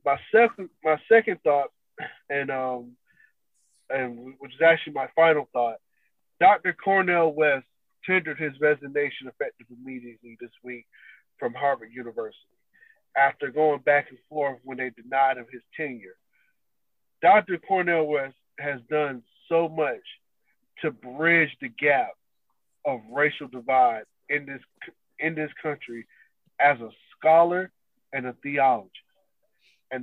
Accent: American